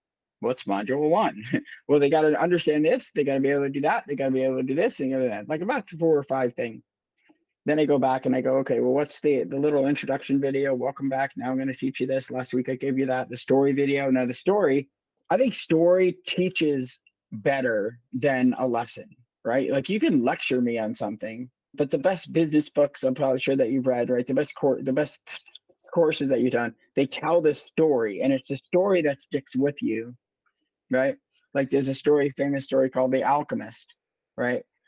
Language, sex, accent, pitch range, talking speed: English, male, American, 125-145 Hz, 220 wpm